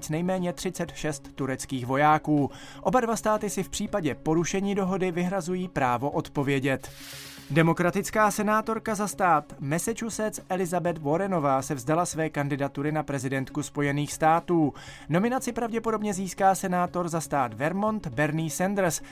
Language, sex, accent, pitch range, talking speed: Czech, male, native, 145-195 Hz, 120 wpm